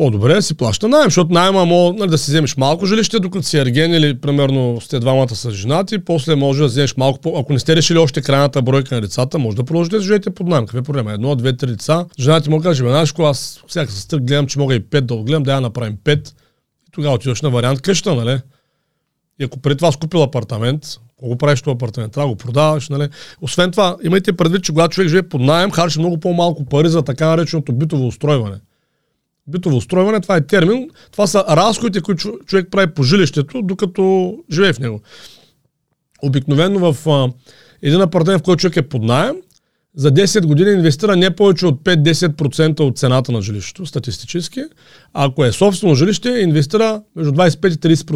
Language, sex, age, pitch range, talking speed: Bulgarian, male, 40-59, 135-180 Hz, 200 wpm